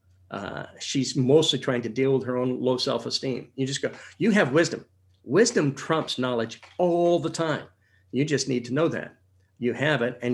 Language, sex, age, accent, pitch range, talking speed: English, male, 50-69, American, 95-135 Hz, 190 wpm